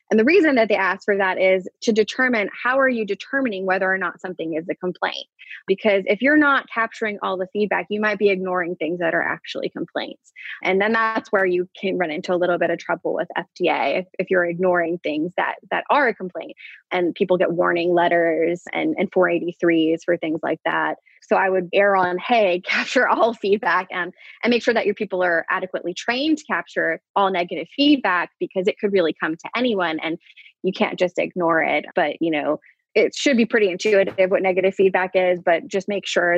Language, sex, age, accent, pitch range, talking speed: English, female, 20-39, American, 175-205 Hz, 215 wpm